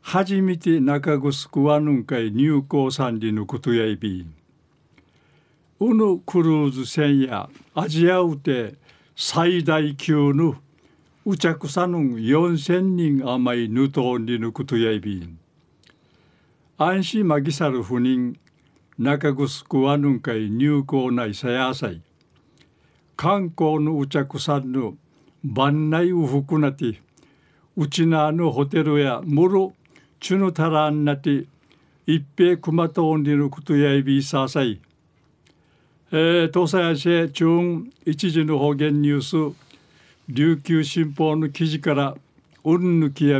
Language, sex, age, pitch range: Japanese, male, 60-79, 135-165 Hz